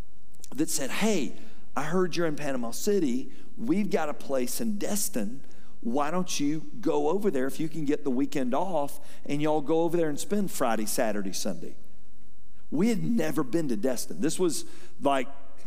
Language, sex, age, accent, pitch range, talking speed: English, male, 50-69, American, 150-195 Hz, 180 wpm